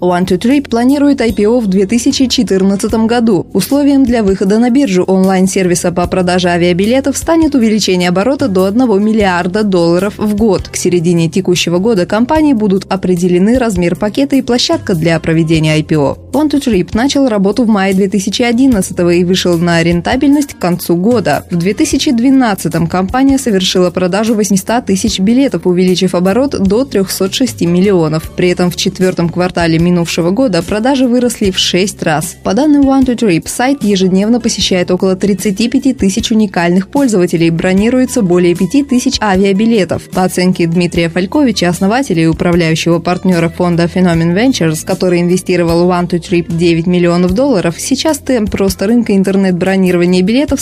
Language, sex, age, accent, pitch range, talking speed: Russian, female, 20-39, native, 180-240 Hz, 135 wpm